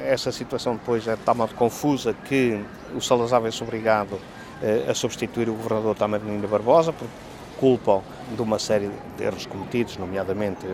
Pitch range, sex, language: 105-140 Hz, male, English